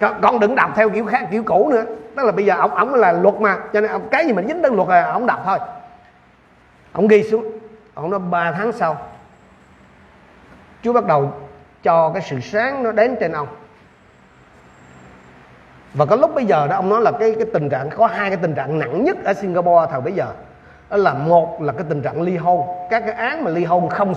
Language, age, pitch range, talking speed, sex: Vietnamese, 30-49, 155-220 Hz, 225 wpm, male